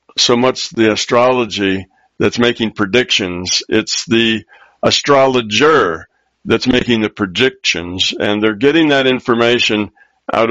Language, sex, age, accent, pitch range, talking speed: English, male, 60-79, American, 105-125 Hz, 115 wpm